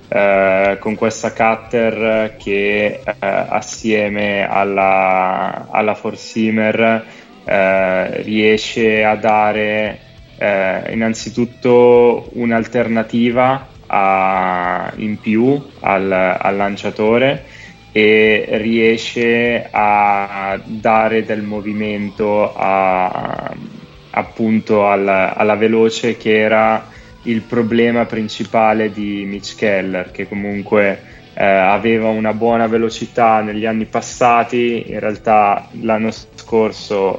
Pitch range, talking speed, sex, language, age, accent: 100-115 Hz, 80 wpm, male, Italian, 20-39, native